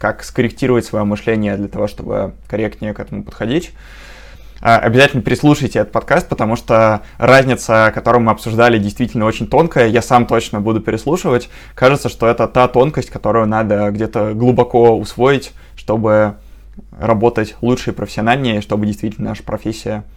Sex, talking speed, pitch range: male, 145 wpm, 105-120 Hz